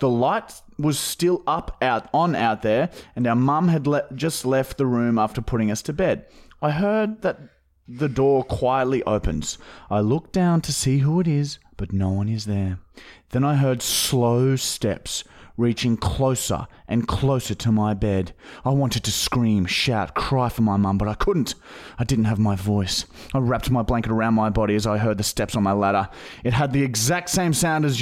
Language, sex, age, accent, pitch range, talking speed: English, male, 30-49, Australian, 115-175 Hz, 200 wpm